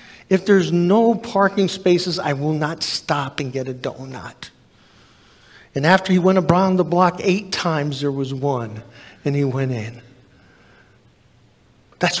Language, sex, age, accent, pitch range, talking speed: English, male, 50-69, American, 130-185 Hz, 150 wpm